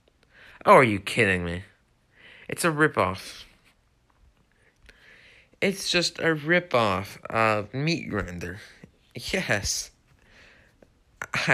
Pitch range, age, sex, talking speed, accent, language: 100-125 Hz, 30-49, male, 90 wpm, American, English